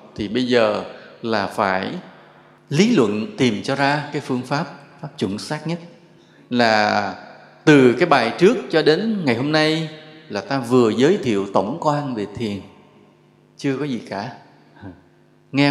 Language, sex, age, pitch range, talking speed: English, male, 20-39, 125-165 Hz, 155 wpm